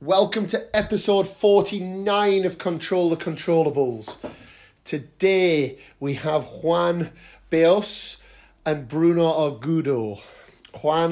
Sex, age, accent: male, 30-49, British